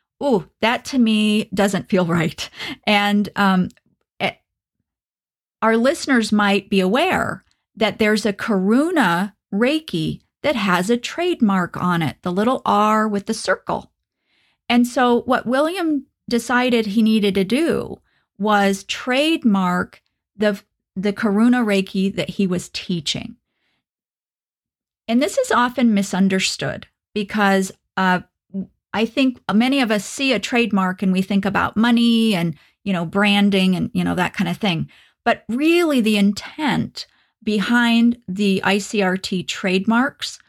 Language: English